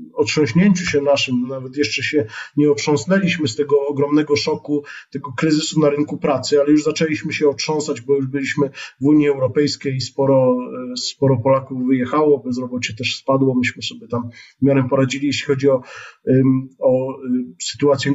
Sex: male